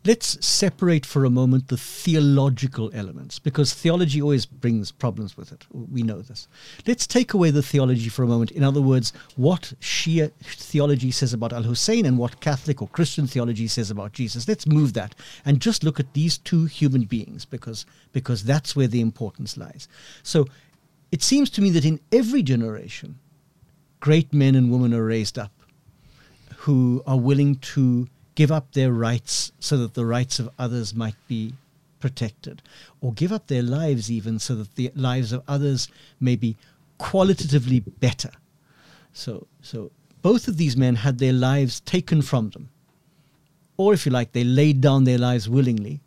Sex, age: male, 50-69